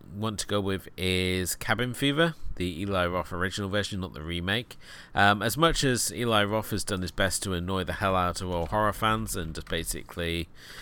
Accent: British